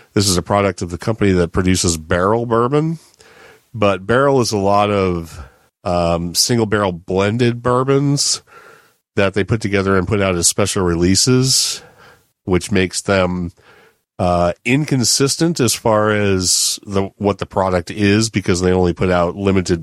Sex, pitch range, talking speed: male, 90-105 Hz, 150 wpm